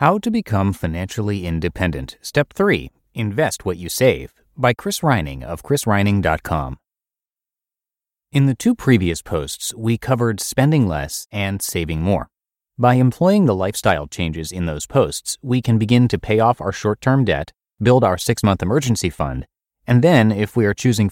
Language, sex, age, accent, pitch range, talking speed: English, male, 30-49, American, 90-125 Hz, 160 wpm